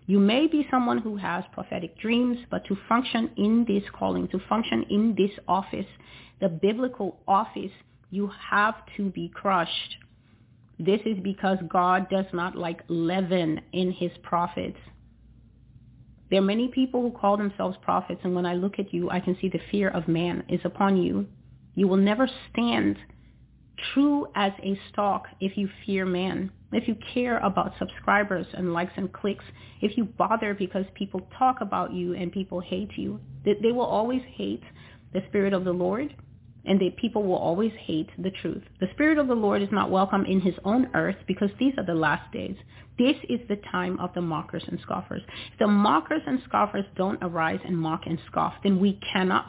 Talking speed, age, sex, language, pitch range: 185 wpm, 30-49, female, English, 170-215 Hz